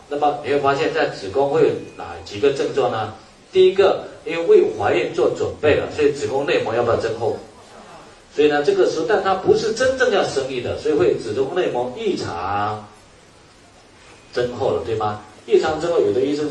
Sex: male